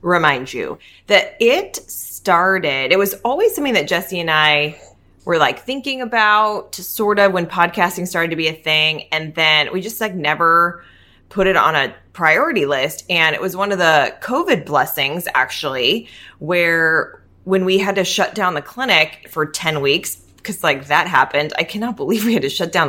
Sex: female